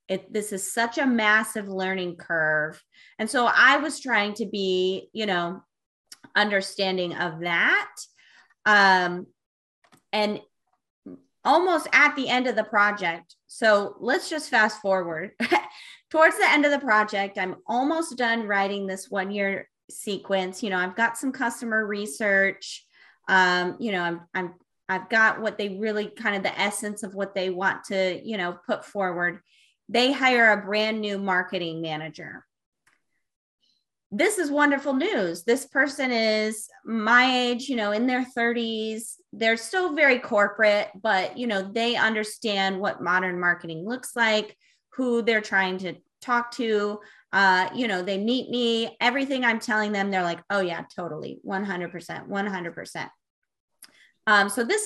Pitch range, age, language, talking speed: 190-235 Hz, 20-39, English, 150 wpm